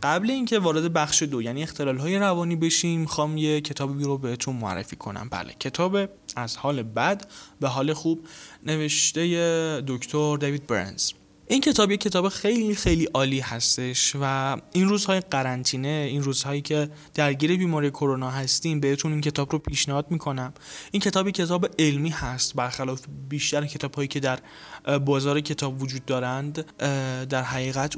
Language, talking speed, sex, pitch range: Persian, 150 wpm, male, 135-165 Hz